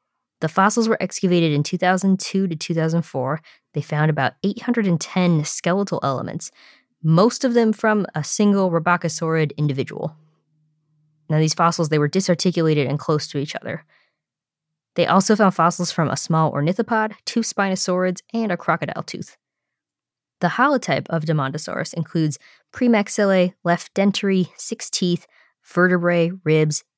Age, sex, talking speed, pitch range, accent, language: 20-39, female, 130 wpm, 150-185 Hz, American, English